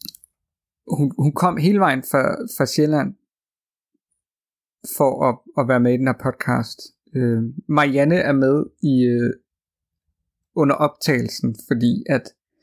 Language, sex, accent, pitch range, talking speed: Danish, male, native, 120-165 Hz, 125 wpm